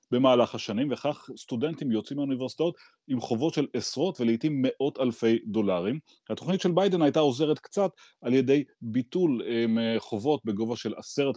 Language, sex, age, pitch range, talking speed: Hebrew, male, 30-49, 100-120 Hz, 140 wpm